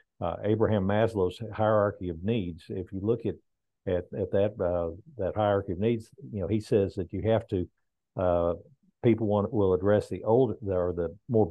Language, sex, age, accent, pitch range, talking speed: English, male, 50-69, American, 90-110 Hz, 190 wpm